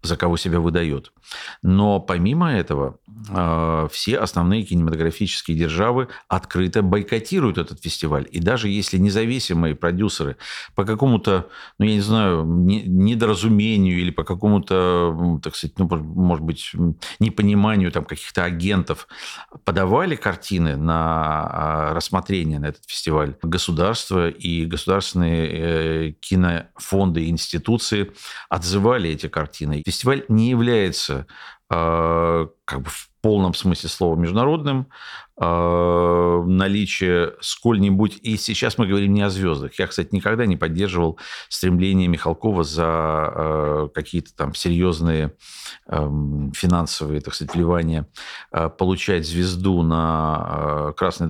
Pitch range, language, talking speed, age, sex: 80-100 Hz, Russian, 105 wpm, 50-69, male